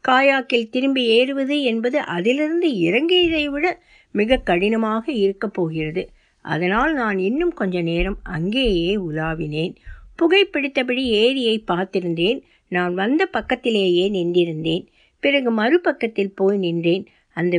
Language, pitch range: Tamil, 185-275 Hz